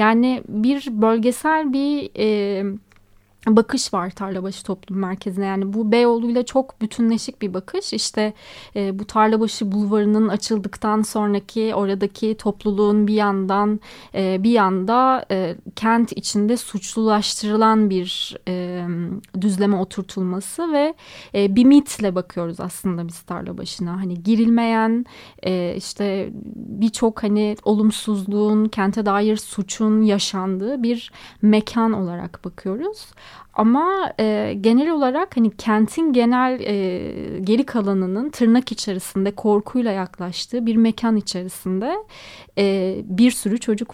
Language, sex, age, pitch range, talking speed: Turkish, female, 30-49, 195-230 Hz, 110 wpm